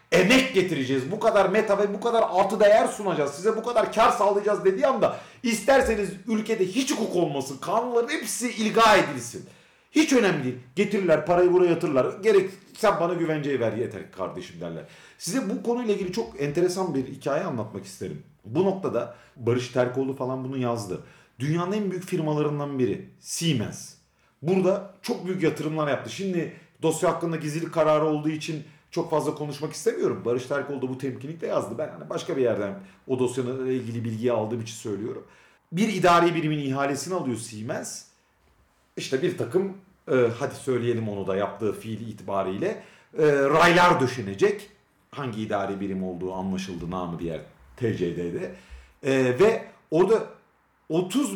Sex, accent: male, native